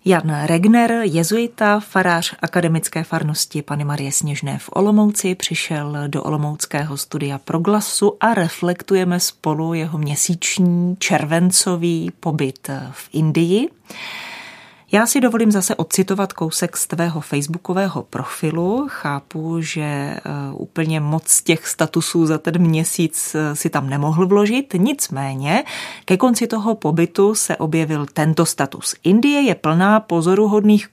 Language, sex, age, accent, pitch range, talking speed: Czech, female, 30-49, native, 155-195 Hz, 120 wpm